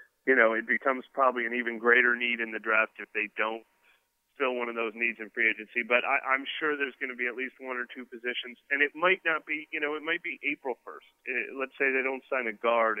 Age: 30-49